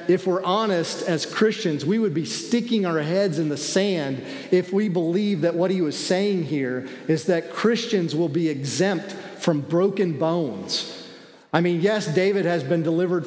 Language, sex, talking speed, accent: English, male, 175 wpm, American